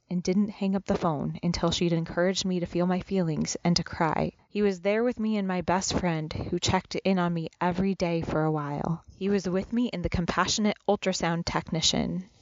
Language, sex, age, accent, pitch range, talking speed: English, female, 20-39, American, 165-195 Hz, 215 wpm